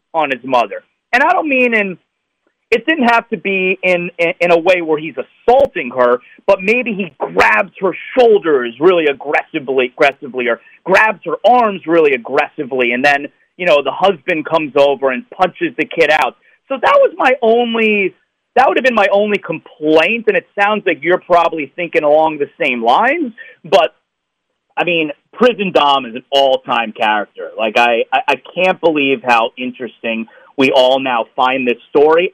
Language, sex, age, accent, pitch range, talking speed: English, male, 30-49, American, 140-225 Hz, 175 wpm